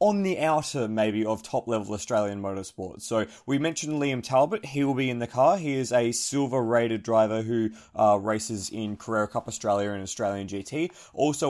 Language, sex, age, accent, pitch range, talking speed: English, male, 20-39, Australian, 115-165 Hz, 185 wpm